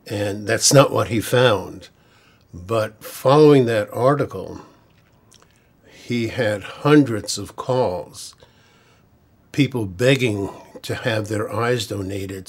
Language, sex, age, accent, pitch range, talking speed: English, male, 60-79, American, 105-125 Hz, 105 wpm